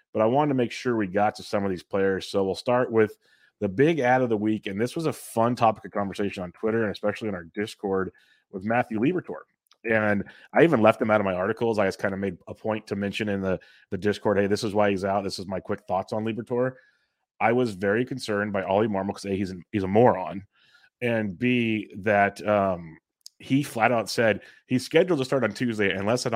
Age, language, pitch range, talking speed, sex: 30-49, English, 100-115 Hz, 245 wpm, male